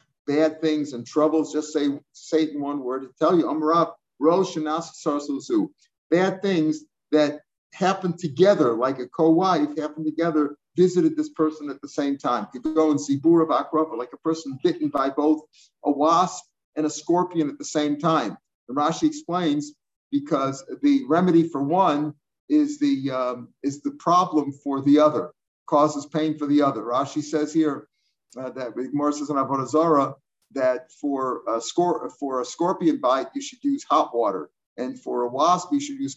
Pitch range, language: 145-175 Hz, English